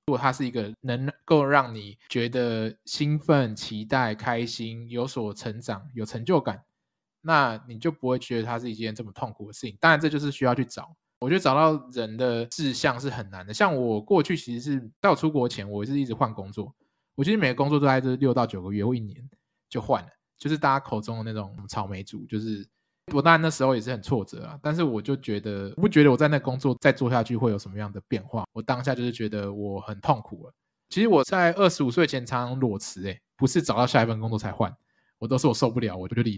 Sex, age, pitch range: male, 20-39, 110-140 Hz